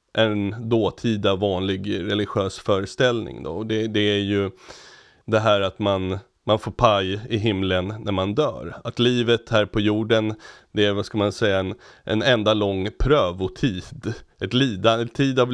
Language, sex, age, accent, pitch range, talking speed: Swedish, male, 30-49, native, 100-115 Hz, 160 wpm